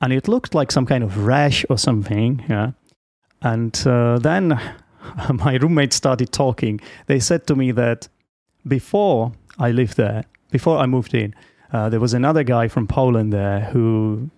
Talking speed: 165 wpm